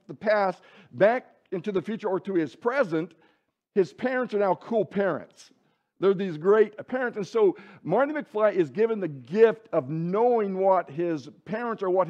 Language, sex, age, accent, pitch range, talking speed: English, male, 60-79, American, 180-230 Hz, 175 wpm